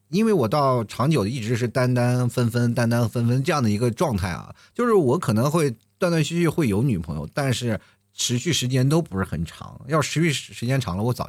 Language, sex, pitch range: Chinese, male, 110-185 Hz